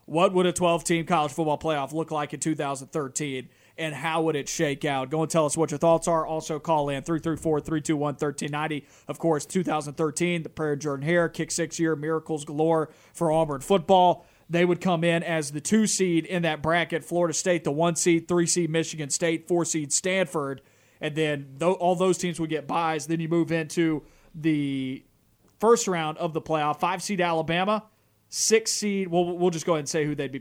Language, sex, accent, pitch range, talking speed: English, male, American, 150-175 Hz, 185 wpm